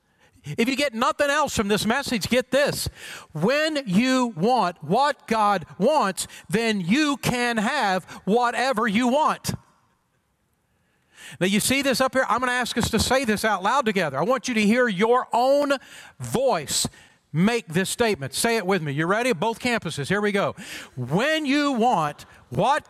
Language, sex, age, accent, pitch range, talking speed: English, male, 50-69, American, 195-255 Hz, 175 wpm